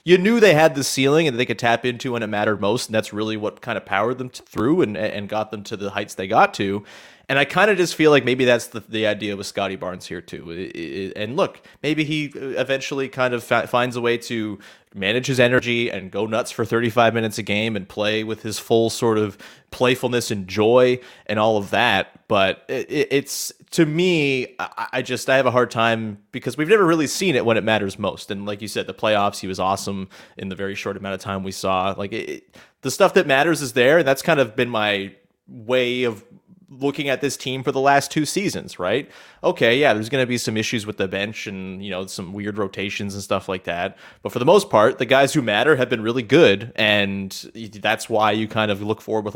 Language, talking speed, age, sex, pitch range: English, 240 wpm, 30-49, male, 105-135 Hz